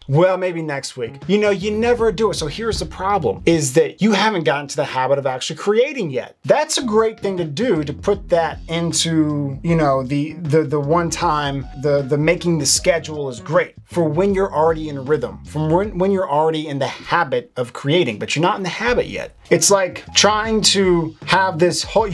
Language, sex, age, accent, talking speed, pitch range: English, male, 30-49, American, 215 wpm, 150-195 Hz